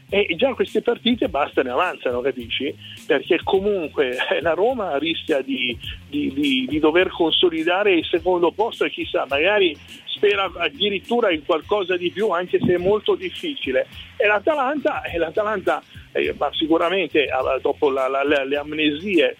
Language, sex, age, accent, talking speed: Italian, male, 50-69, native, 140 wpm